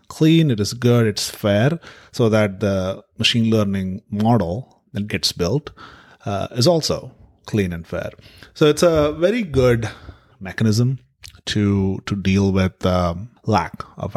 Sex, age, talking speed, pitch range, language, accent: male, 30-49, 145 wpm, 100-125 Hz, English, Indian